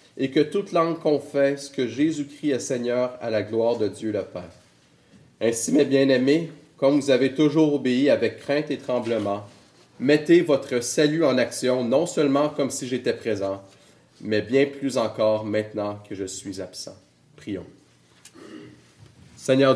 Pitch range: 110-140 Hz